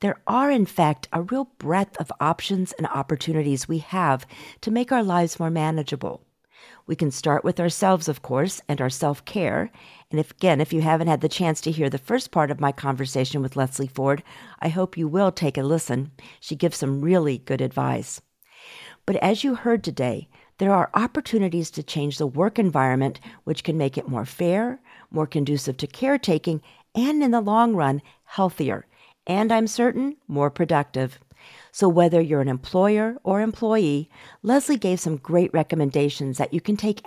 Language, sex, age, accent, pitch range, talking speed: English, female, 50-69, American, 145-210 Hz, 180 wpm